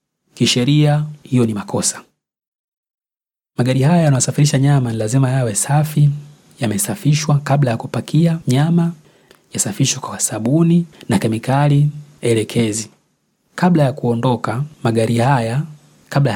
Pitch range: 115-145 Hz